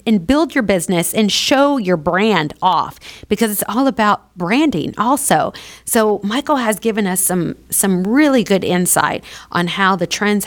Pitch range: 175-210 Hz